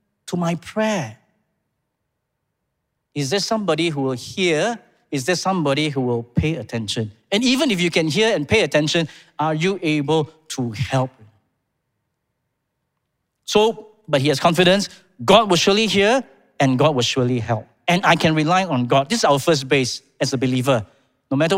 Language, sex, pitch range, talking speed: English, male, 130-180 Hz, 165 wpm